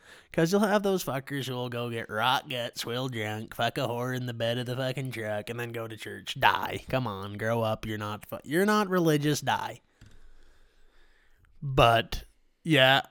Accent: American